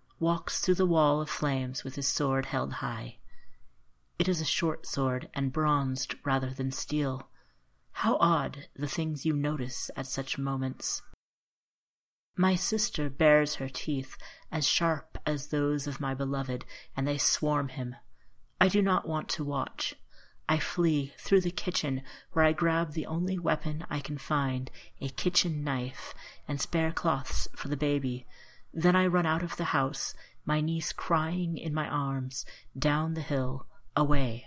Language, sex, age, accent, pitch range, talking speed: English, female, 30-49, American, 135-160 Hz, 160 wpm